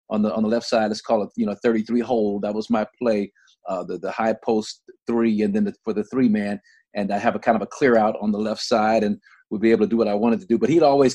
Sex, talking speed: male, 305 wpm